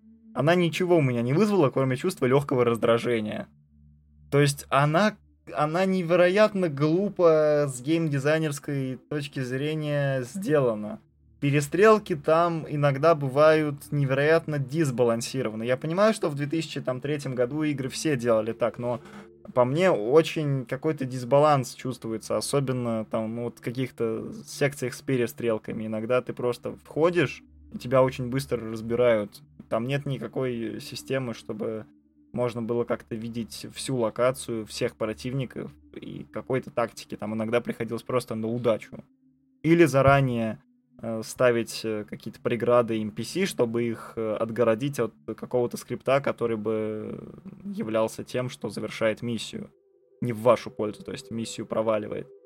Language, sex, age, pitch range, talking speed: Russian, male, 20-39, 115-150 Hz, 125 wpm